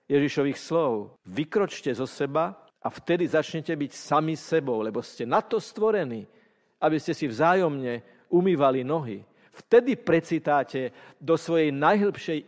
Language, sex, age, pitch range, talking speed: Slovak, male, 50-69, 130-160 Hz, 130 wpm